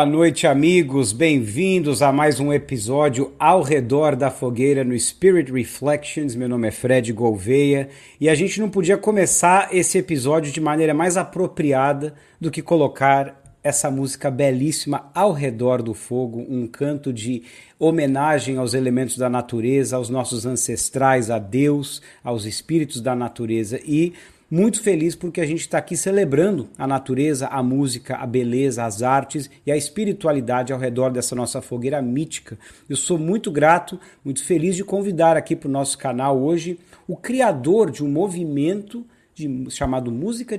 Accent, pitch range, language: Brazilian, 130-160 Hz, English